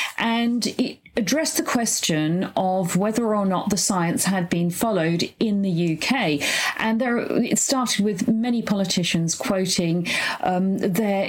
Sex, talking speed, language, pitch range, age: female, 145 wpm, English, 180-235 Hz, 40-59